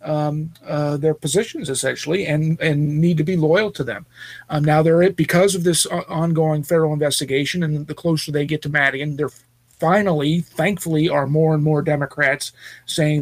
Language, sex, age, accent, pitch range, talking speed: English, male, 40-59, American, 145-160 Hz, 175 wpm